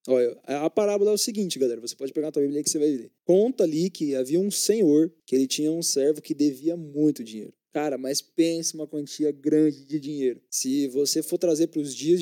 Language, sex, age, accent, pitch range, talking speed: Portuguese, male, 20-39, Brazilian, 135-195 Hz, 230 wpm